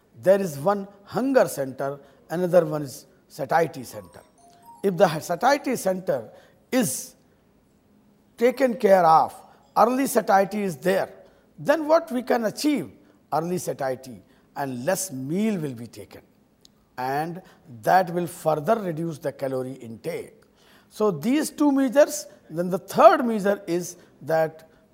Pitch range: 140-225 Hz